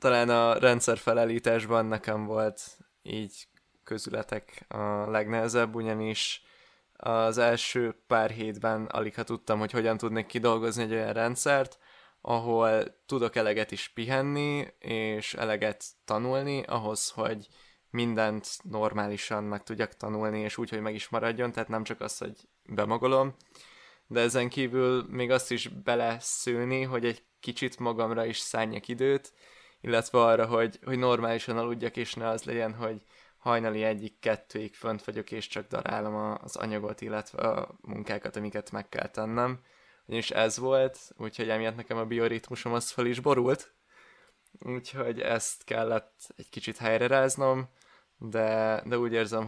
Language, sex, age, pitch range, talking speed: Hungarian, male, 20-39, 110-120 Hz, 140 wpm